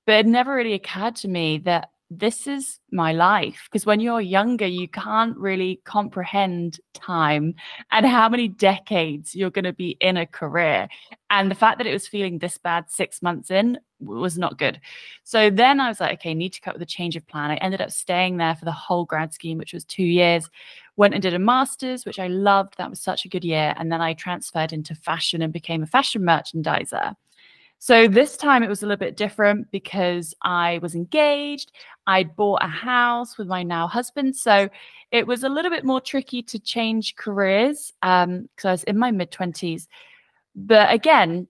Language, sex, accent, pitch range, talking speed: English, female, British, 180-240 Hz, 205 wpm